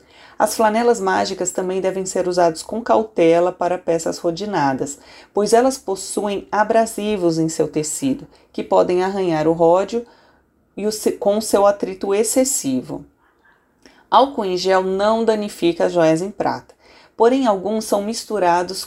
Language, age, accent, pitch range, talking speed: Portuguese, 30-49, Brazilian, 170-220 Hz, 130 wpm